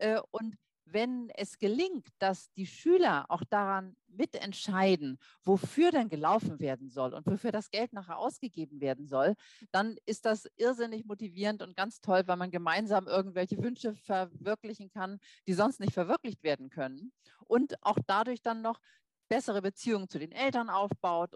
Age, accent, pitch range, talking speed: 40-59, German, 180-230 Hz, 155 wpm